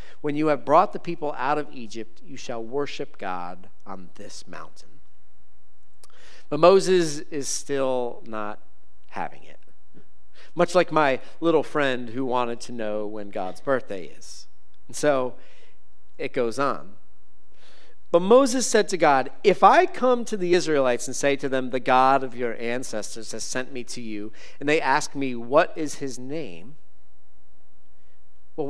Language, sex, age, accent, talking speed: English, male, 40-59, American, 155 wpm